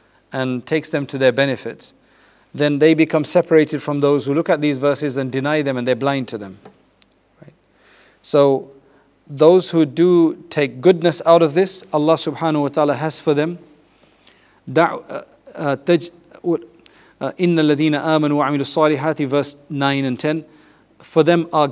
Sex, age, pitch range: male, 40-59, 135-155 Hz